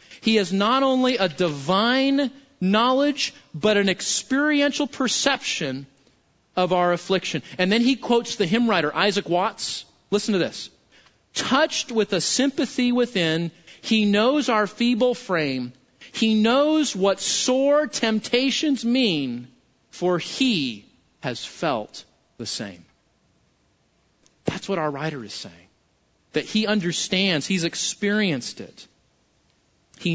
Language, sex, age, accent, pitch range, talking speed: English, male, 40-59, American, 185-255 Hz, 120 wpm